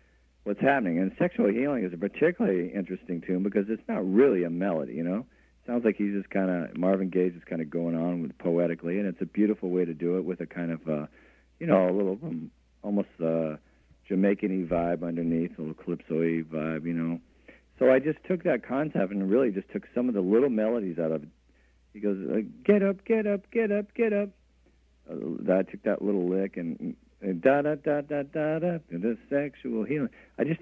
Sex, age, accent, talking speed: male, 50-69, American, 215 wpm